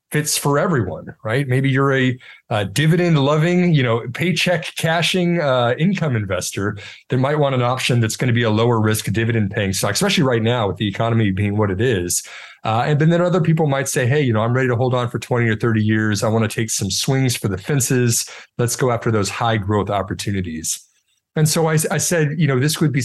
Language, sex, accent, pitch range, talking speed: English, male, American, 110-140 Hz, 220 wpm